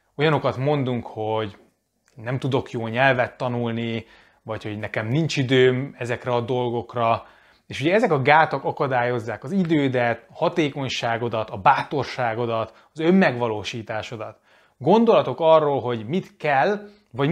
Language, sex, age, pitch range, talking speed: Hungarian, male, 30-49, 120-150 Hz, 120 wpm